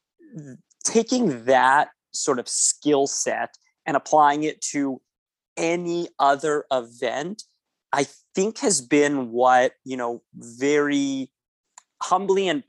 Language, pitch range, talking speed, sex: English, 130-185 Hz, 110 wpm, male